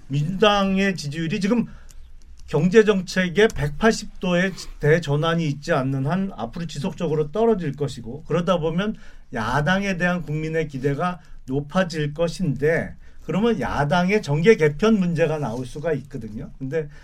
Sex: male